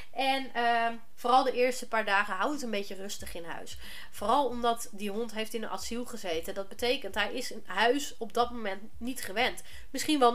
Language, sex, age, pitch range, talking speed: Dutch, female, 30-49, 195-240 Hz, 210 wpm